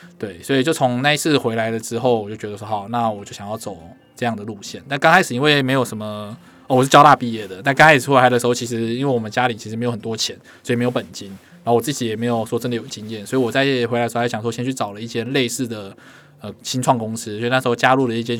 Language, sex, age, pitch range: Chinese, male, 20-39, 110-130 Hz